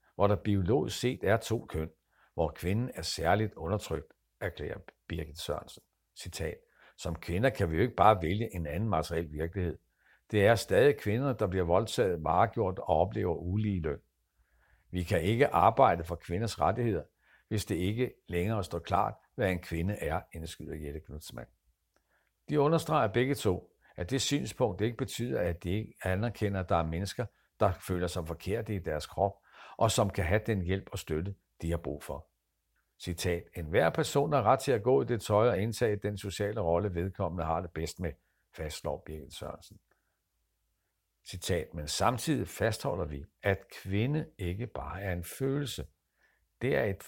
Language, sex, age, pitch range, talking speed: Danish, male, 60-79, 85-115 Hz, 170 wpm